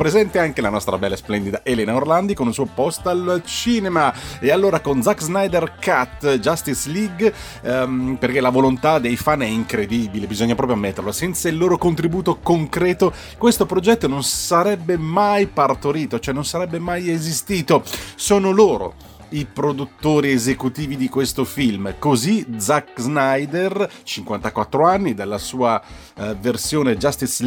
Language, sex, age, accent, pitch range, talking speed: Italian, male, 30-49, native, 120-175 Hz, 145 wpm